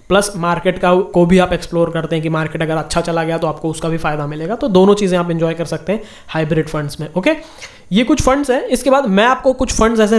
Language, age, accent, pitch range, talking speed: Hindi, 20-39, native, 165-205 Hz, 265 wpm